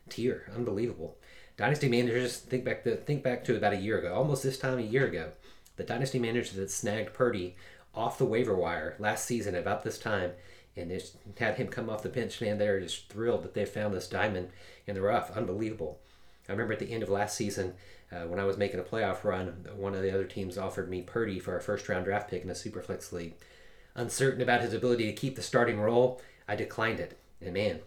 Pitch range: 100-120 Hz